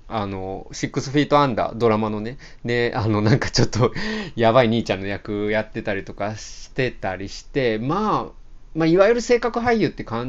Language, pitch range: Japanese, 105-160 Hz